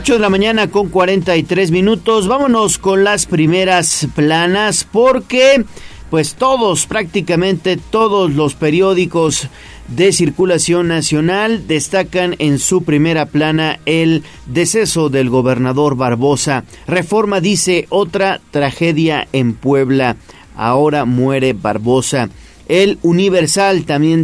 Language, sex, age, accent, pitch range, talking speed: Spanish, male, 40-59, Mexican, 145-185 Hz, 110 wpm